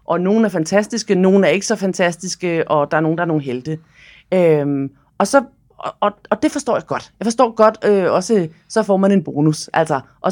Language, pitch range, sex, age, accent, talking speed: Danish, 165-215 Hz, female, 30-49, native, 225 wpm